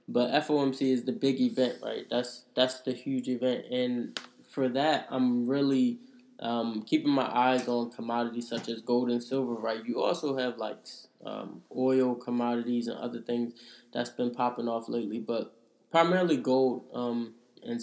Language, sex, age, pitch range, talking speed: English, male, 10-29, 120-130 Hz, 165 wpm